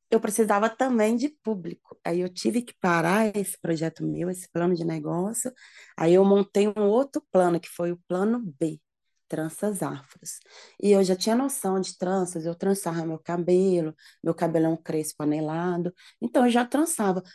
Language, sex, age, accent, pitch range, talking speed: Portuguese, female, 20-39, Brazilian, 175-225 Hz, 170 wpm